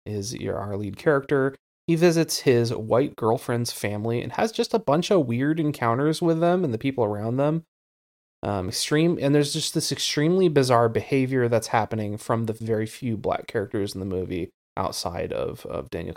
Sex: male